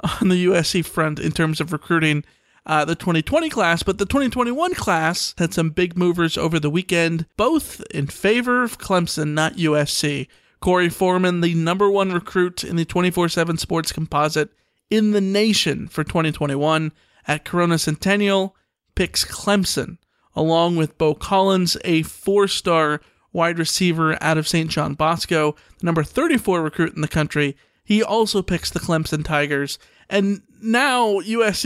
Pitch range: 160-200 Hz